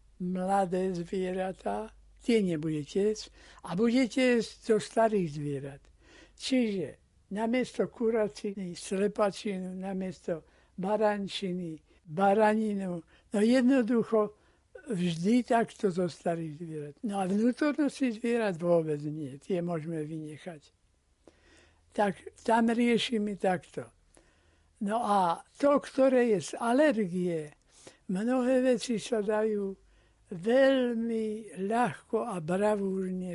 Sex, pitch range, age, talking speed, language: male, 170-230 Hz, 60-79, 95 wpm, Slovak